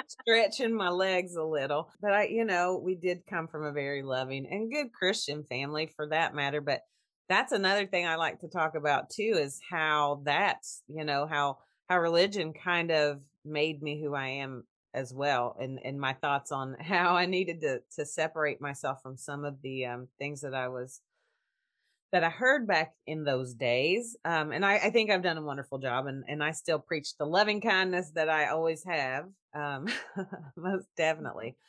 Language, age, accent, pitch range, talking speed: English, 30-49, American, 140-180 Hz, 195 wpm